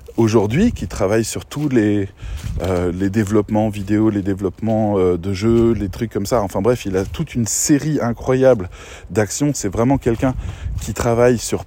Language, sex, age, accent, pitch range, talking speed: French, male, 20-39, French, 100-135 Hz, 170 wpm